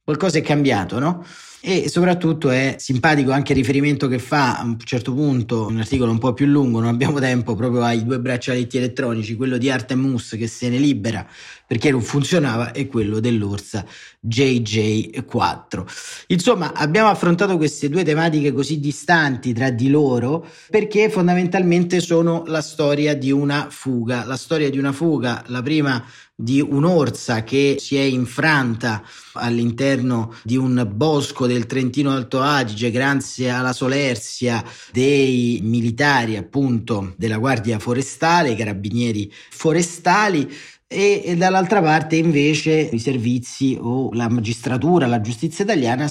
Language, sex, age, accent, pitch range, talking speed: Italian, male, 30-49, native, 120-150 Hz, 145 wpm